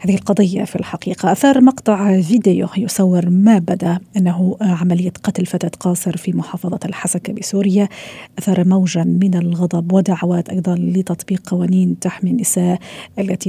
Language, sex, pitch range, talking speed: Arabic, female, 180-200 Hz, 135 wpm